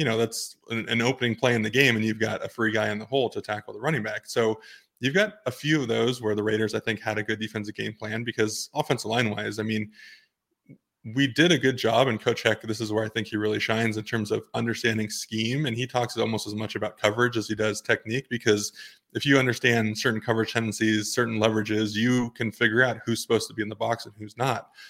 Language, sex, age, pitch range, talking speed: English, male, 20-39, 110-120 Hz, 245 wpm